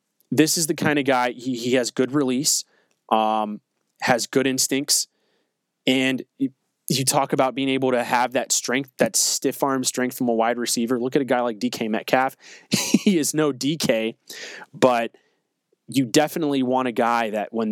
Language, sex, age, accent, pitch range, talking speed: English, male, 20-39, American, 115-140 Hz, 180 wpm